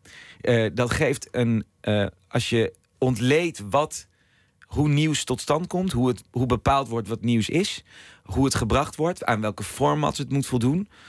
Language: Dutch